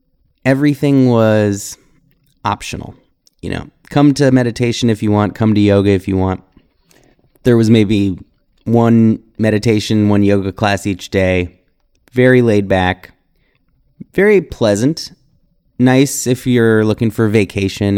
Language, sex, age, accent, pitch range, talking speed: English, male, 30-49, American, 100-125 Hz, 125 wpm